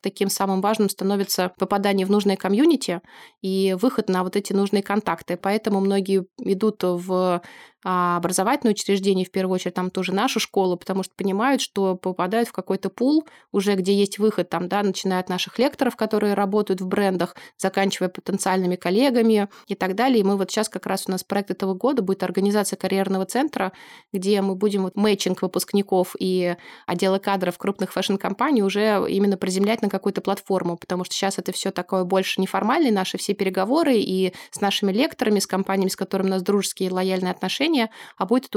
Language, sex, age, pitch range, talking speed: Russian, female, 20-39, 185-205 Hz, 175 wpm